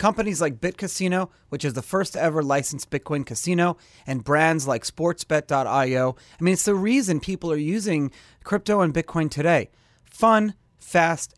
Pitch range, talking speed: 130-185 Hz, 155 wpm